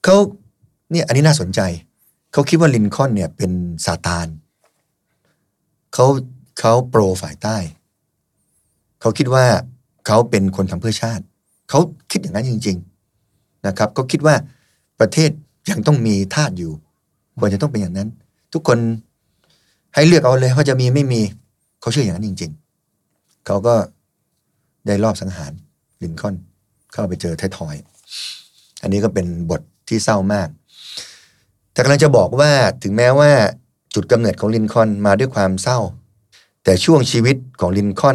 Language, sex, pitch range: Thai, male, 95-125 Hz